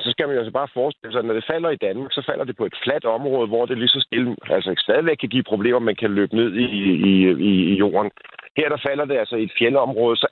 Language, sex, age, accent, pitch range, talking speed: Danish, male, 50-69, native, 105-140 Hz, 280 wpm